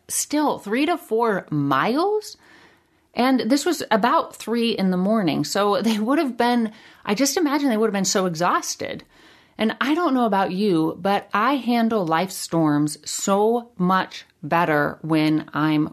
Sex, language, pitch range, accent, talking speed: female, English, 170-240 Hz, American, 160 wpm